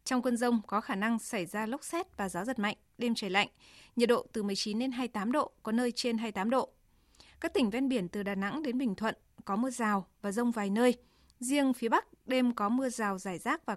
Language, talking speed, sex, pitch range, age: Vietnamese, 270 wpm, female, 210-255 Hz, 20-39